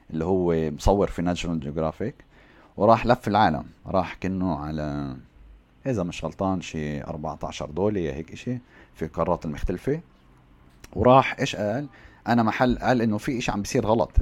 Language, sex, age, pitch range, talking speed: Arabic, male, 30-49, 80-115 Hz, 150 wpm